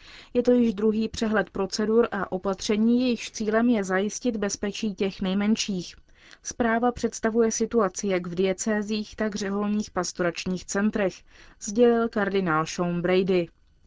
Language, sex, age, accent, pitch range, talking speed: Czech, female, 30-49, native, 180-215 Hz, 130 wpm